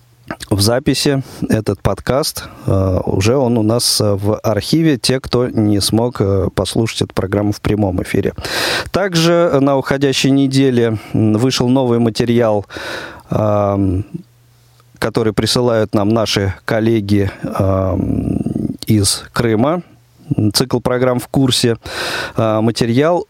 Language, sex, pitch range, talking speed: Russian, male, 105-130 Hz, 115 wpm